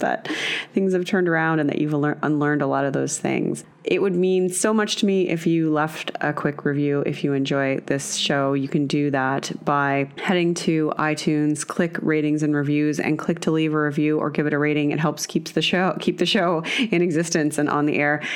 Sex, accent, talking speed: female, American, 225 wpm